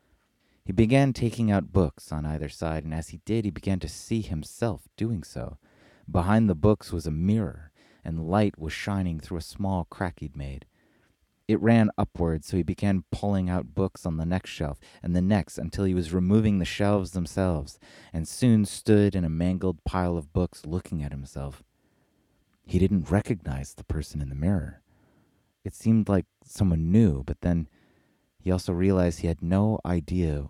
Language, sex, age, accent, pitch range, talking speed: English, male, 30-49, American, 80-95 Hz, 180 wpm